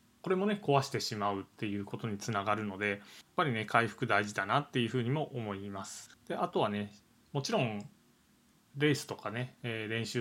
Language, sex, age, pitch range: Japanese, male, 20-39, 110-145 Hz